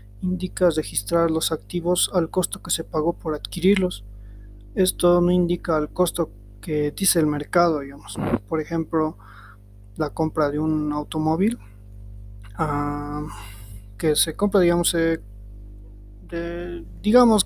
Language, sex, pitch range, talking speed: Spanish, male, 105-170 Hz, 125 wpm